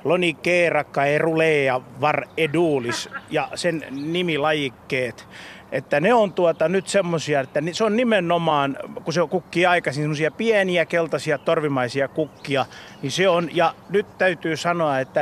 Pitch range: 135-170 Hz